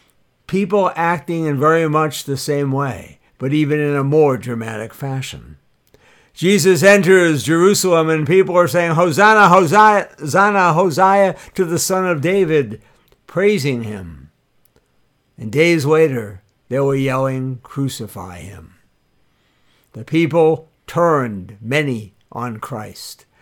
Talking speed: 125 wpm